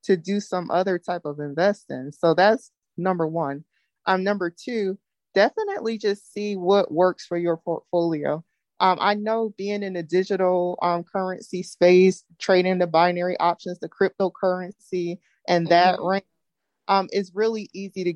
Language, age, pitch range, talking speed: English, 20-39, 170-200 Hz, 150 wpm